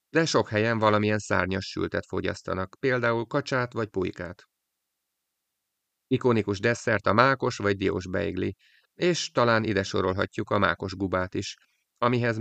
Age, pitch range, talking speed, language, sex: 30-49, 100-120 Hz, 130 wpm, Hungarian, male